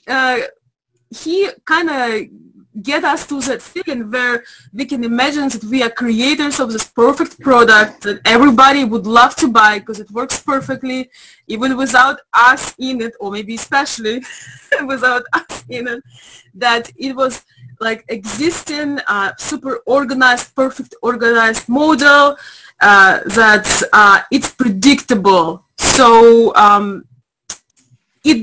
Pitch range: 225-280 Hz